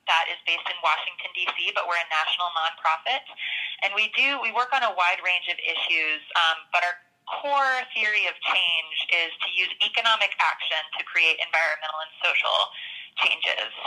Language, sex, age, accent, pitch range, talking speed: English, female, 20-39, American, 175-200 Hz, 175 wpm